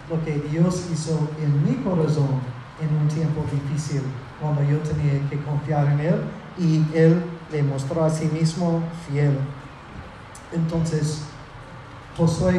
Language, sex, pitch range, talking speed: Spanish, male, 155-190 Hz, 135 wpm